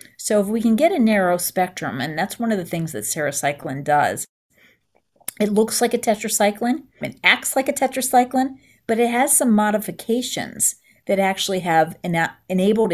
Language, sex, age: English, female, 40-59